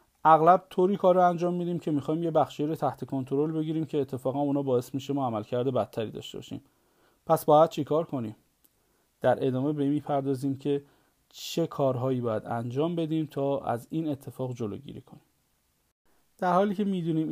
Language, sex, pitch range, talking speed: Persian, male, 125-160 Hz, 160 wpm